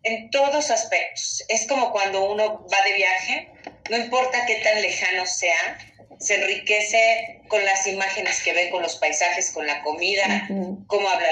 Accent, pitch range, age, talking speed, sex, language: Mexican, 180-230 Hz, 40-59, 165 wpm, female, Spanish